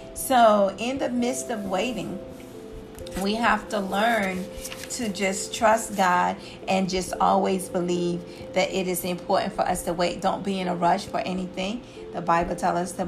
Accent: American